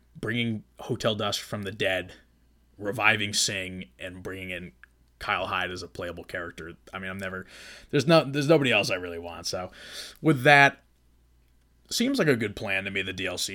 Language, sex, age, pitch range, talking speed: English, male, 20-39, 95-115 Hz, 180 wpm